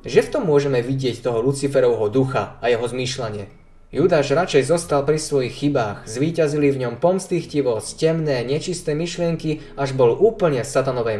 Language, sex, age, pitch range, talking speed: Slovak, male, 20-39, 125-165 Hz, 150 wpm